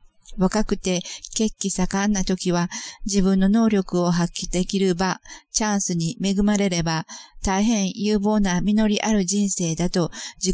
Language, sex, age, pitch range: Japanese, female, 50-69, 175-210 Hz